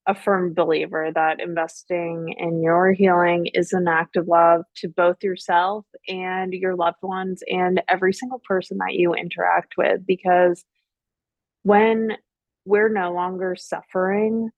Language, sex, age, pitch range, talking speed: English, female, 20-39, 170-190 Hz, 140 wpm